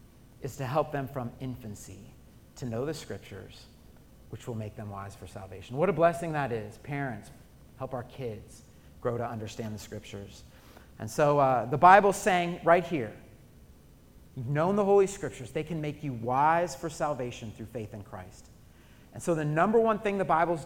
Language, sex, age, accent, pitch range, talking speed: English, male, 30-49, American, 115-155 Hz, 180 wpm